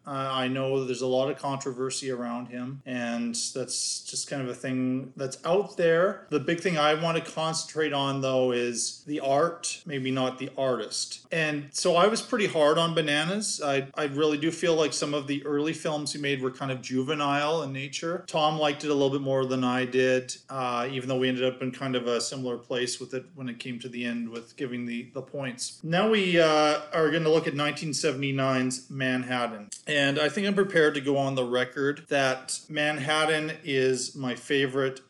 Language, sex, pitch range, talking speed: English, male, 130-150 Hz, 210 wpm